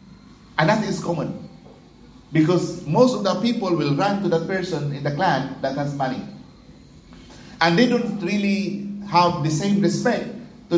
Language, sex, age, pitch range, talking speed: English, male, 50-69, 160-230 Hz, 160 wpm